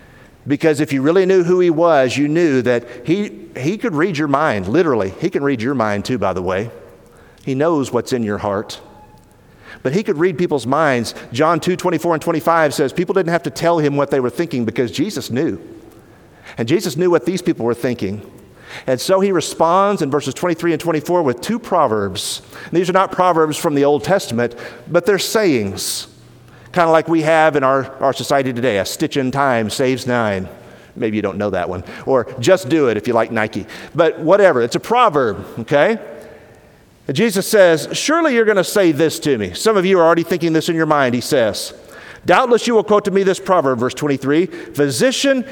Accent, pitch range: American, 130-185 Hz